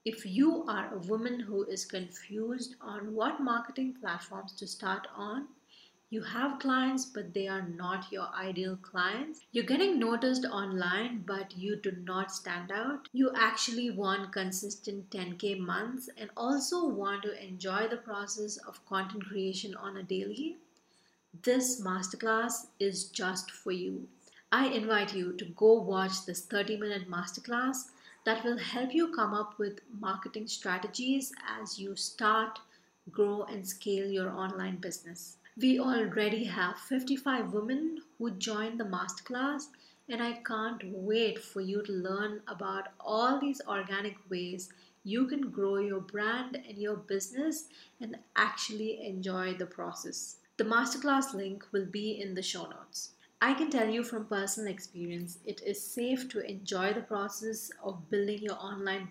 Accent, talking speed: Indian, 150 wpm